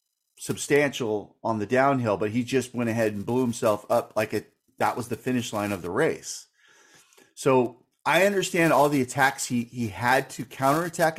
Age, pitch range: 30-49, 110-135 Hz